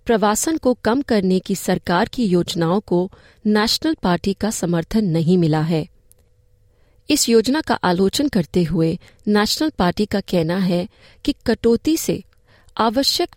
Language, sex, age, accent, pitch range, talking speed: Hindi, female, 30-49, native, 170-230 Hz, 140 wpm